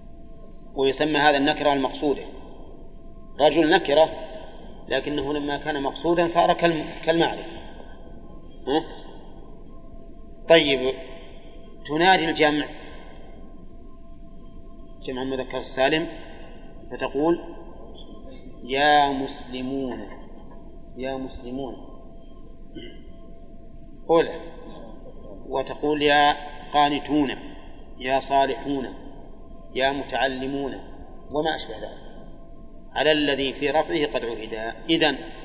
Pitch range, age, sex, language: 130-155 Hz, 30-49, male, Arabic